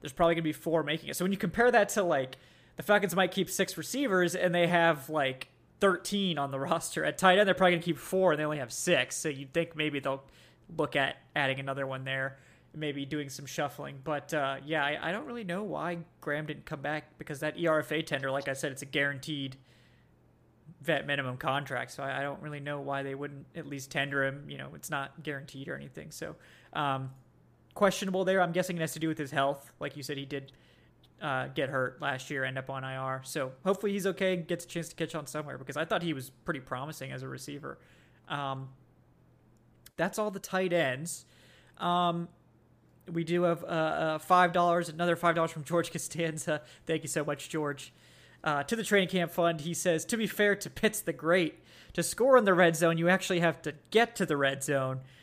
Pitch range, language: 135-175 Hz, English